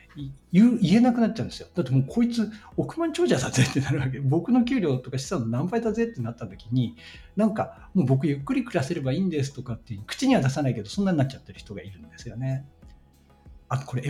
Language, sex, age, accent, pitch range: Japanese, male, 60-79, native, 115-185 Hz